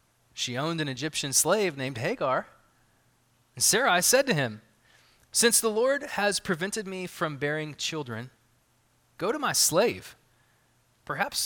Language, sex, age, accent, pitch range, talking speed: English, male, 20-39, American, 125-185 Hz, 135 wpm